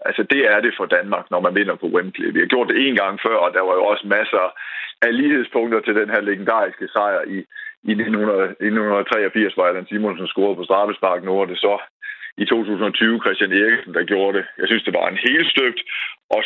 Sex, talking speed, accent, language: male, 205 wpm, native, Danish